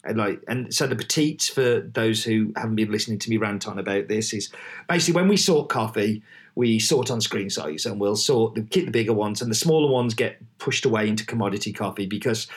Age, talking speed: 40-59, 225 wpm